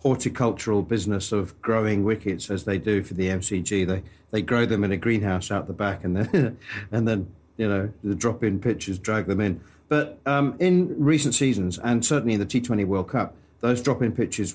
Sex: male